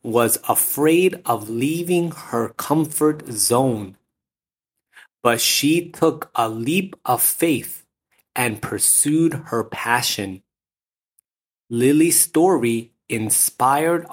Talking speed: 90 wpm